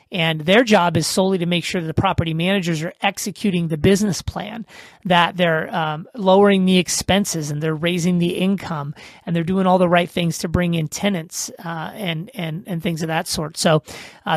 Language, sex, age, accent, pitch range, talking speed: English, male, 30-49, American, 160-185 Hz, 205 wpm